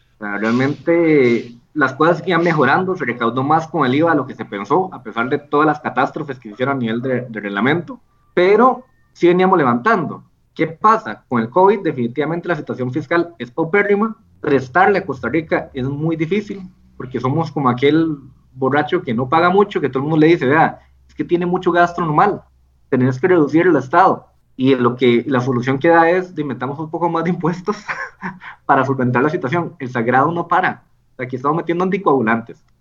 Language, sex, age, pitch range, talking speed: Spanish, male, 20-39, 125-180 Hz, 190 wpm